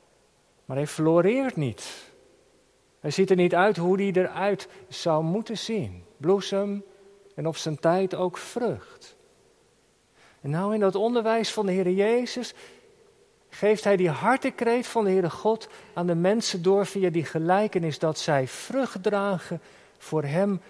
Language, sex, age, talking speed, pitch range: Dutch, male, 50-69, 150 wpm, 170-220 Hz